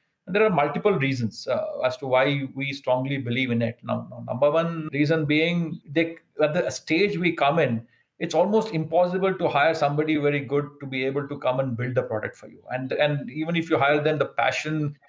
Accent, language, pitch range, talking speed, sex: Indian, English, 140-170 Hz, 215 wpm, male